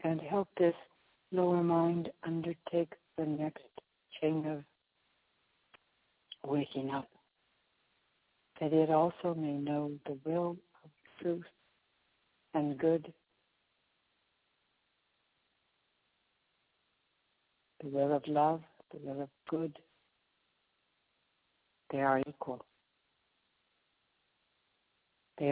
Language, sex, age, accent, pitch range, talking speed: English, female, 60-79, American, 145-165 Hz, 80 wpm